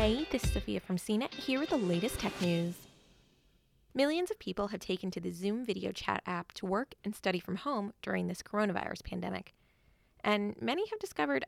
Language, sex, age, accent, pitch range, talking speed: English, female, 20-39, American, 190-275 Hz, 195 wpm